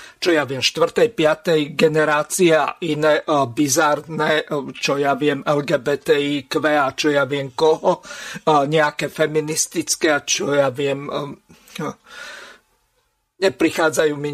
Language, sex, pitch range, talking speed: Slovak, male, 150-195 Hz, 110 wpm